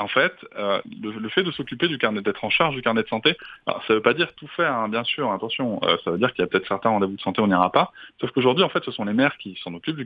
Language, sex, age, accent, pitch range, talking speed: French, male, 20-39, French, 100-135 Hz, 330 wpm